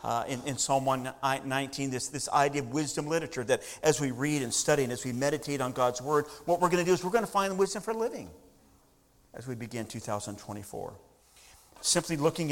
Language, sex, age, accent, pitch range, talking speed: English, male, 50-69, American, 115-155 Hz, 205 wpm